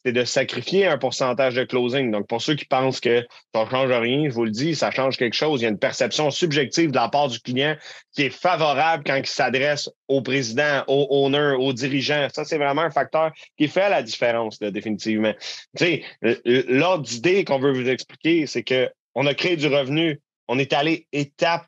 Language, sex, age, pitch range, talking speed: French, male, 30-49, 130-165 Hz, 215 wpm